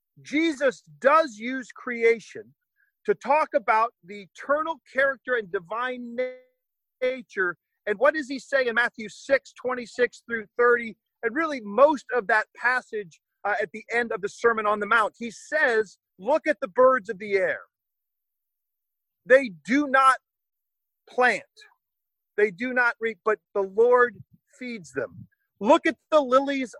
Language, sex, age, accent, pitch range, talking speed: English, male, 40-59, American, 215-285 Hz, 150 wpm